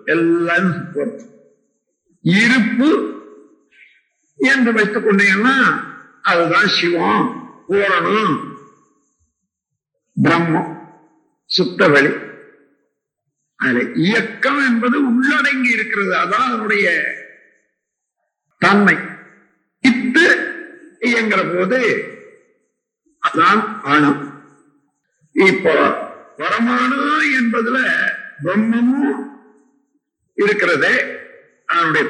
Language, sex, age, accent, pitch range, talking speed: Tamil, male, 50-69, native, 185-285 Hz, 50 wpm